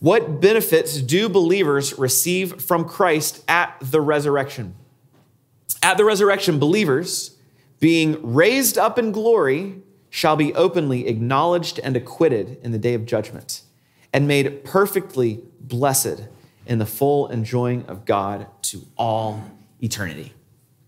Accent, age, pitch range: American, 30-49, 130-185 Hz